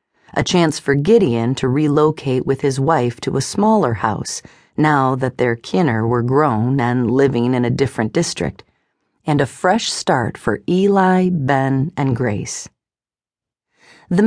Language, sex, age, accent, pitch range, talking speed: English, female, 40-59, American, 125-170 Hz, 145 wpm